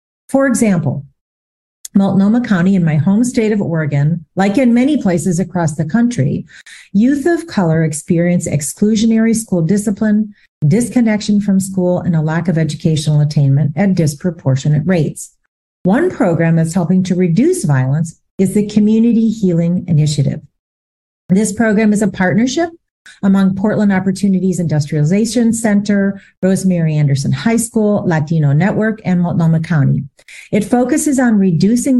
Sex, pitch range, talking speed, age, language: female, 160-215 Hz, 135 wpm, 40-59, English